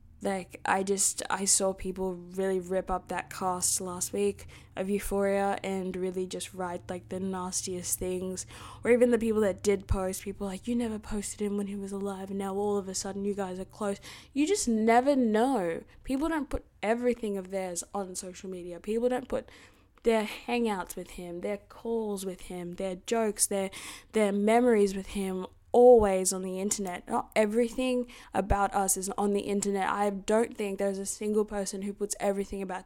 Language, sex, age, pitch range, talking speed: English, female, 10-29, 185-215 Hz, 190 wpm